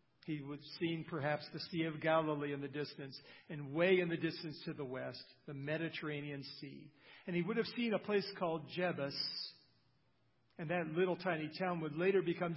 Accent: American